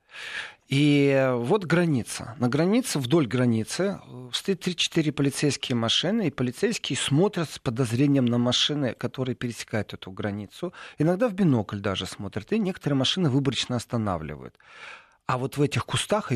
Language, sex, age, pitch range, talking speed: Russian, male, 40-59, 115-155 Hz, 135 wpm